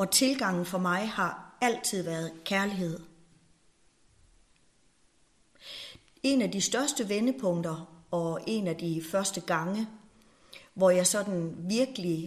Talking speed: 110 wpm